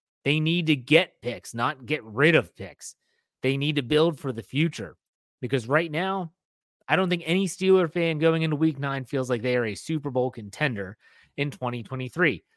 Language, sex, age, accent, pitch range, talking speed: English, male, 30-49, American, 125-165 Hz, 190 wpm